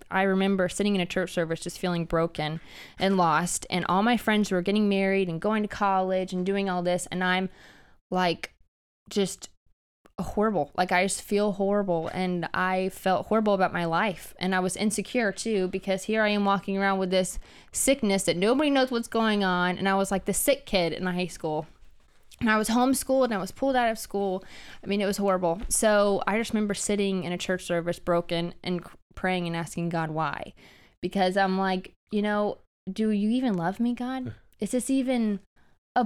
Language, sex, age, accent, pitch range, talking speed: English, female, 20-39, American, 180-210 Hz, 200 wpm